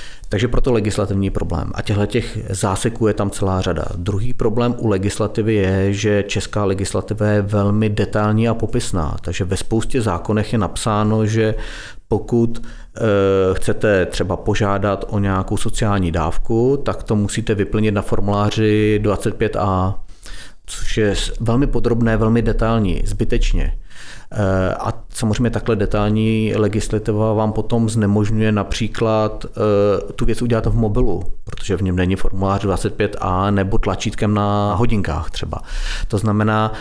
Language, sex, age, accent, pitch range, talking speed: Czech, male, 40-59, native, 100-115 Hz, 130 wpm